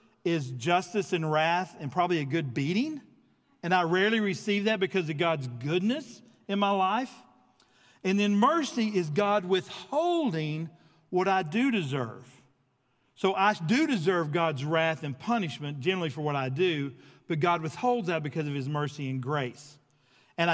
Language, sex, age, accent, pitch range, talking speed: English, male, 50-69, American, 140-205 Hz, 160 wpm